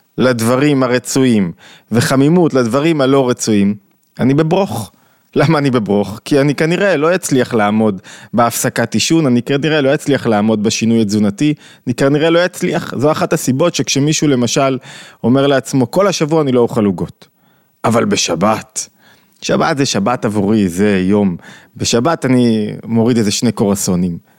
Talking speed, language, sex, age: 140 wpm, Hebrew, male, 30-49